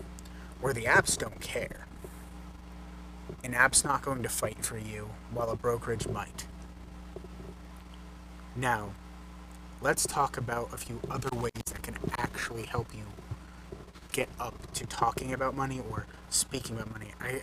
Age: 30-49